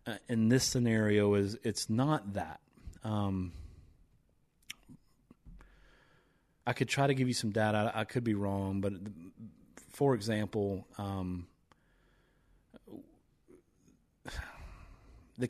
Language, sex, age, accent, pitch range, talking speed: English, male, 30-49, American, 100-125 Hz, 100 wpm